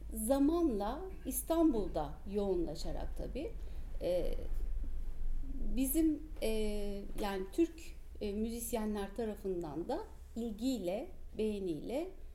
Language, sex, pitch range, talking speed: Turkish, female, 170-250 Hz, 75 wpm